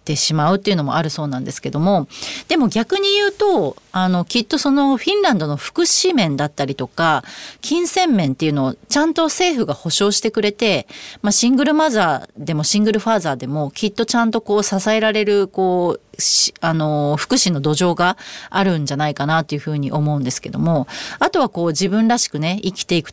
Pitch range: 155-240 Hz